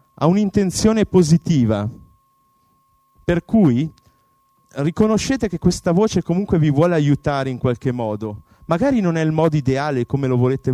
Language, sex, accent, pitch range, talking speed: Italian, male, native, 120-175 Hz, 140 wpm